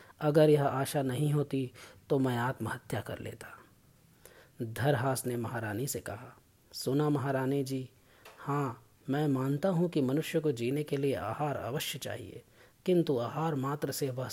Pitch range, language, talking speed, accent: 120-150 Hz, Hindi, 150 wpm, native